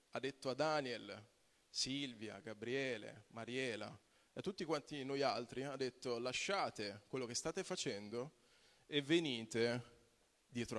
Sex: male